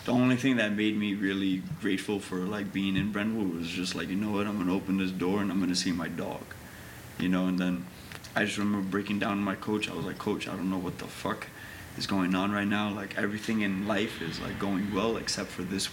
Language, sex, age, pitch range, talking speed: English, male, 20-39, 95-110 Hz, 260 wpm